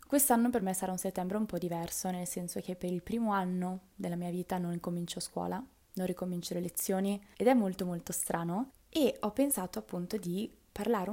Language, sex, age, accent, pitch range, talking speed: Italian, female, 20-39, native, 175-205 Hz, 200 wpm